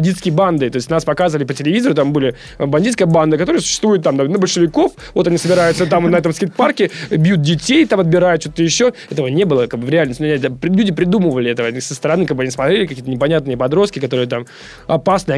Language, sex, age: Russian, male, 20-39